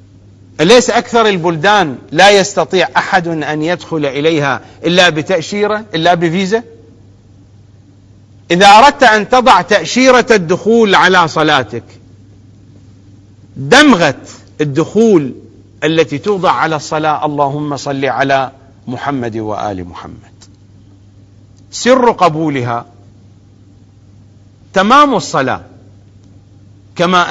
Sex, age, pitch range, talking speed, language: male, 40-59, 100-165 Hz, 85 wpm, English